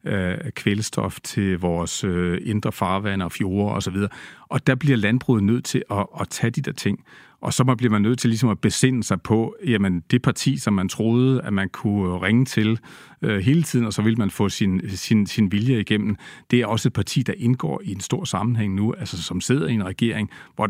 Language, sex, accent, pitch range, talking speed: Danish, male, native, 105-135 Hz, 225 wpm